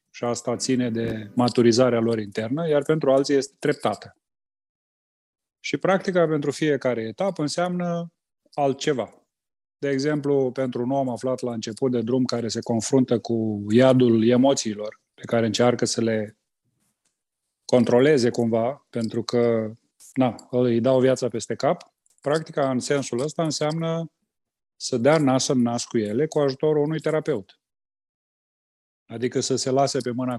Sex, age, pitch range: male, 30-49, 120-150 Hz